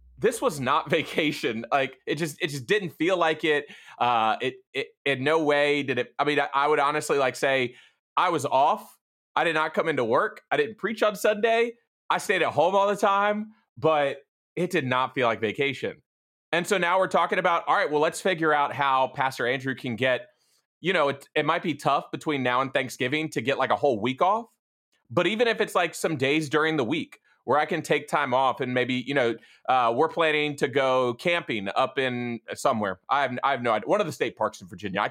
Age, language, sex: 30-49, English, male